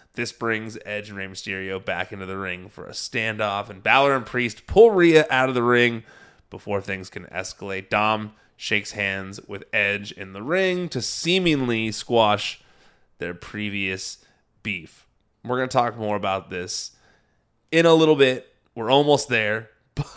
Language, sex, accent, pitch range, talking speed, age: English, male, American, 105-130 Hz, 165 wpm, 20-39